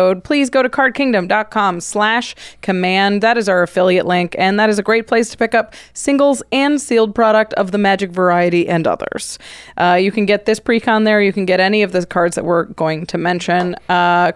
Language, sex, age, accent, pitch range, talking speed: English, female, 20-39, American, 180-220 Hz, 210 wpm